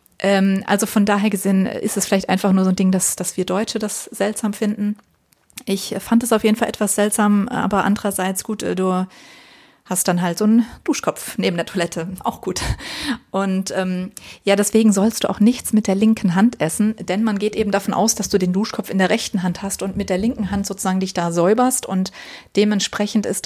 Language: German